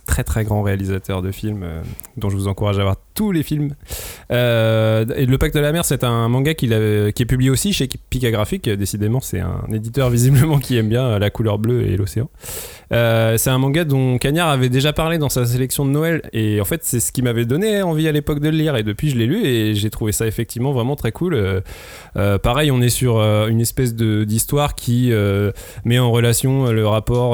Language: French